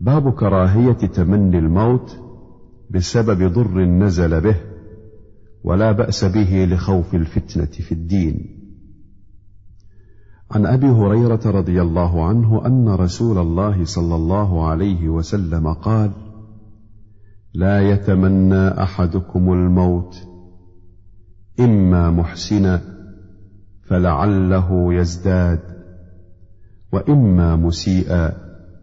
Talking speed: 80 wpm